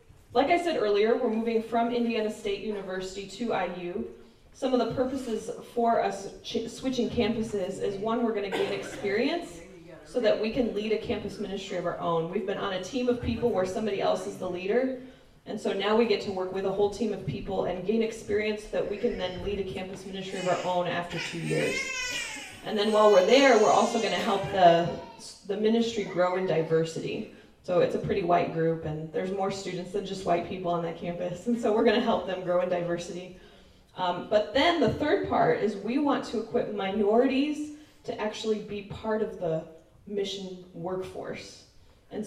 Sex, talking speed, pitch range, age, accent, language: female, 205 wpm, 185-235 Hz, 20-39, American, English